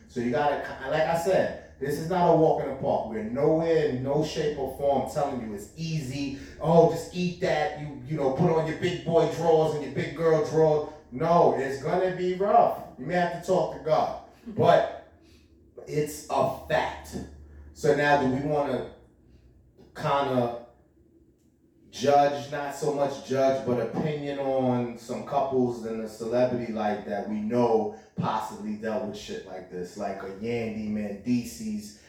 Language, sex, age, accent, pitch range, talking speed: English, male, 30-49, American, 110-155 Hz, 180 wpm